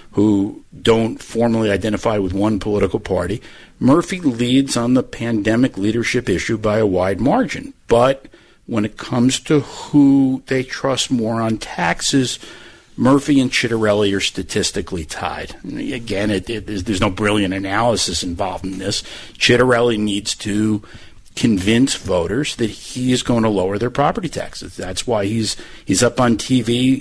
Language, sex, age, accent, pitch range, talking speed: English, male, 50-69, American, 105-130 Hz, 150 wpm